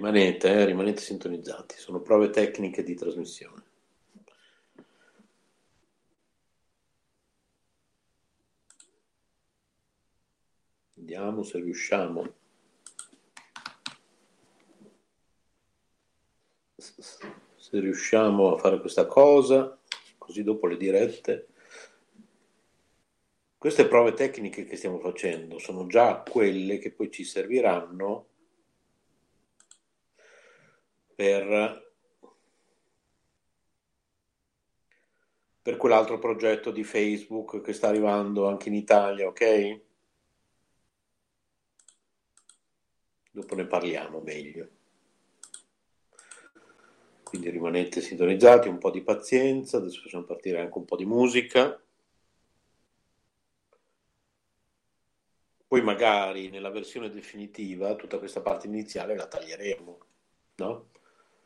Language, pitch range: Italian, 95-140 Hz